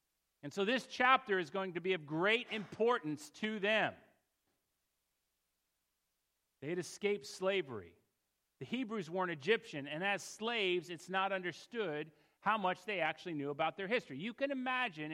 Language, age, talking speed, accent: English, 40-59, 150 wpm, American